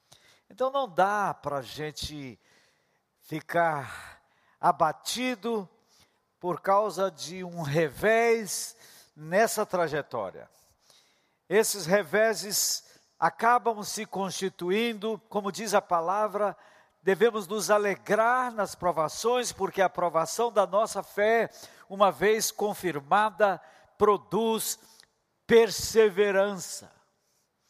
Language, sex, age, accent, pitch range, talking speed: Portuguese, male, 60-79, Brazilian, 170-215 Hz, 85 wpm